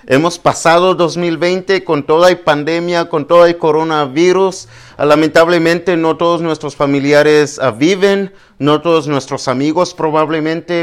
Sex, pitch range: male, 125-155 Hz